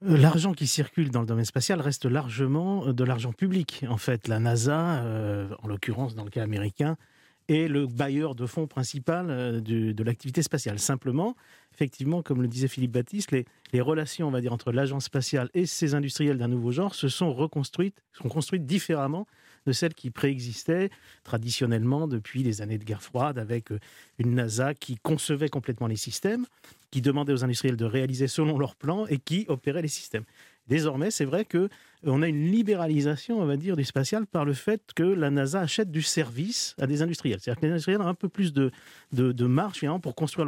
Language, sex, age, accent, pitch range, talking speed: French, male, 40-59, French, 125-160 Hz, 195 wpm